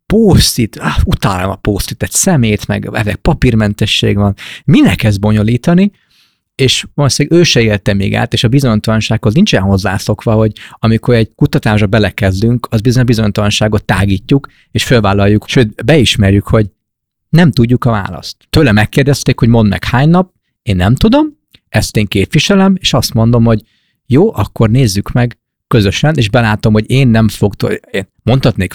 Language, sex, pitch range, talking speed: Hungarian, male, 100-125 Hz, 150 wpm